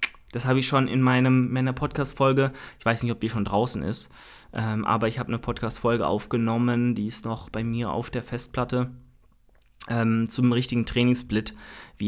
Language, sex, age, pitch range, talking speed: German, male, 20-39, 110-135 Hz, 180 wpm